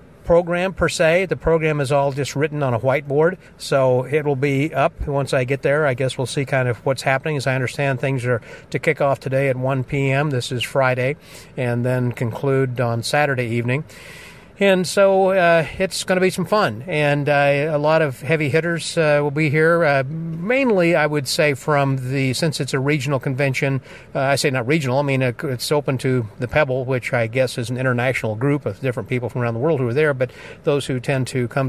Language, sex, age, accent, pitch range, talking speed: English, male, 50-69, American, 125-150 Hz, 220 wpm